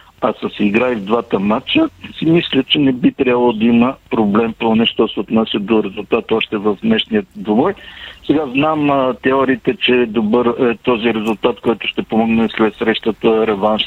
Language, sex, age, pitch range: Bulgarian, male, 50-69, 110-130 Hz